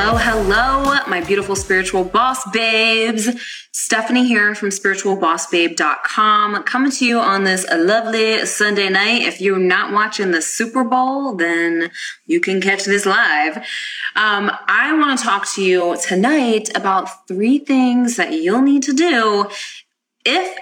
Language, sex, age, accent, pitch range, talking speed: English, female, 20-39, American, 190-255 Hz, 140 wpm